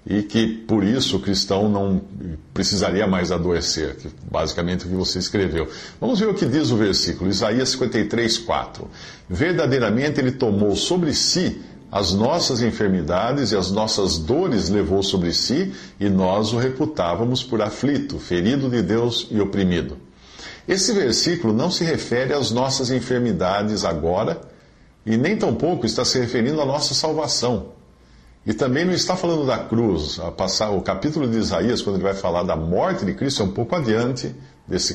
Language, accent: Portuguese, Brazilian